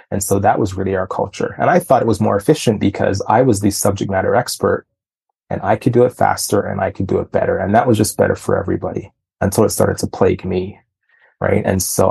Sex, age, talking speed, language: male, 30-49, 245 wpm, English